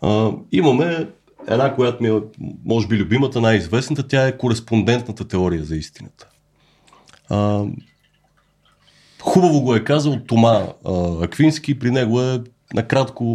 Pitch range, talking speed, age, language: 95-125 Hz, 125 wpm, 30-49, Bulgarian